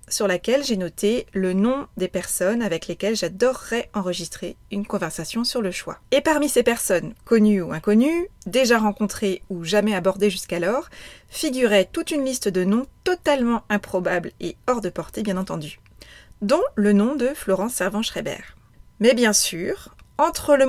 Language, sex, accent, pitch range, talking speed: French, female, French, 185-240 Hz, 160 wpm